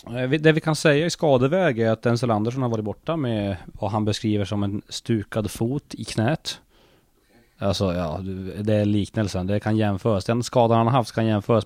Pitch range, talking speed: 105-135 Hz, 195 wpm